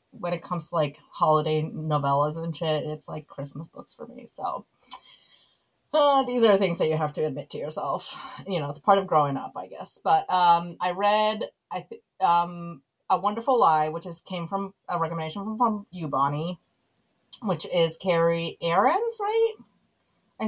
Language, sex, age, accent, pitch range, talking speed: English, female, 30-49, American, 155-200 Hz, 180 wpm